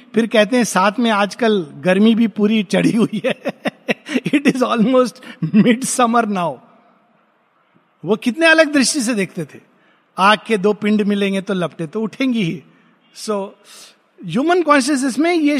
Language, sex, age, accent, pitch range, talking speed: Hindi, male, 50-69, native, 180-240 Hz, 155 wpm